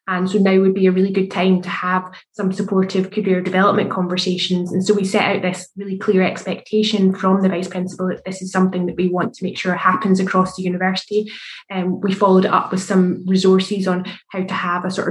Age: 20-39